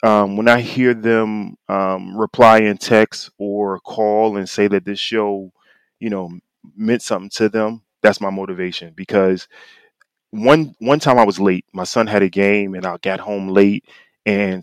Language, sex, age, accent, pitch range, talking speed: English, male, 20-39, American, 95-115 Hz, 175 wpm